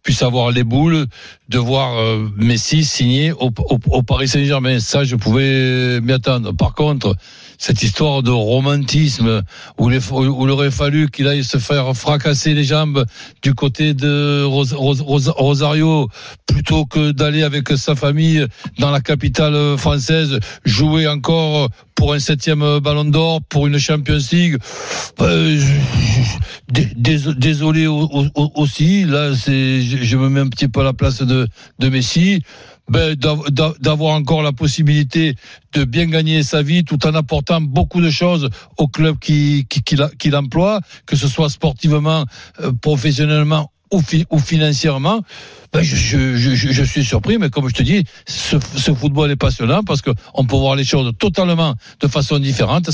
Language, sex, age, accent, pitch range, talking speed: French, male, 60-79, French, 130-155 Hz, 165 wpm